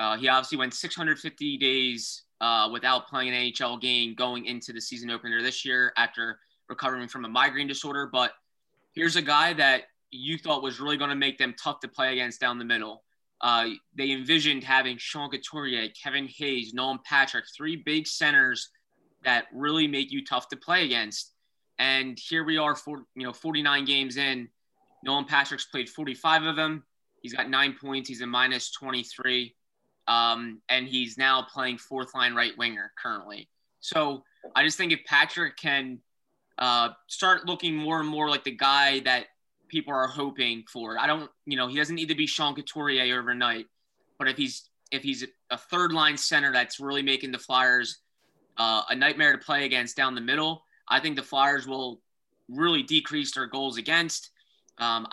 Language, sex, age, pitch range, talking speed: English, male, 20-39, 125-150 Hz, 180 wpm